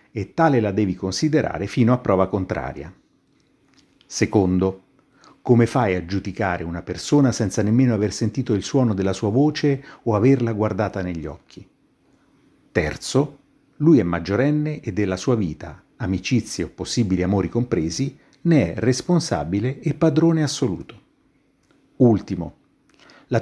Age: 50-69